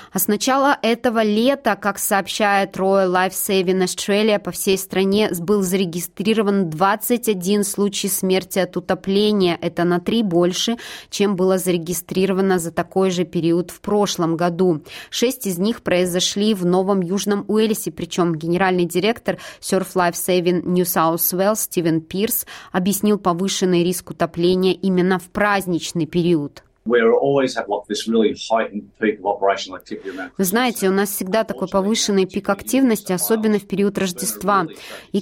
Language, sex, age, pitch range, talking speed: Russian, female, 20-39, 175-205 Hz, 130 wpm